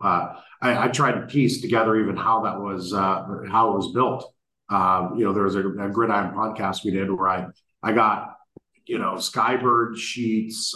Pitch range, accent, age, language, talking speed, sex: 95-115 Hz, American, 40-59, English, 195 wpm, male